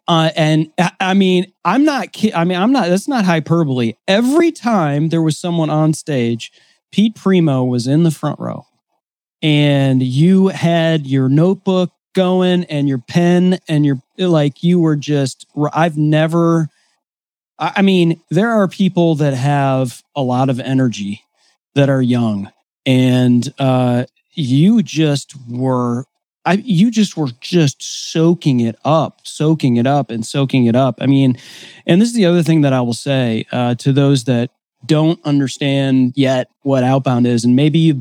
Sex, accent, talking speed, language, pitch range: male, American, 165 wpm, English, 130-170 Hz